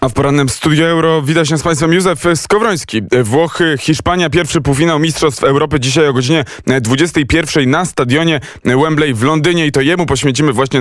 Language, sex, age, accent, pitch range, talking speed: Polish, male, 20-39, native, 125-150 Hz, 170 wpm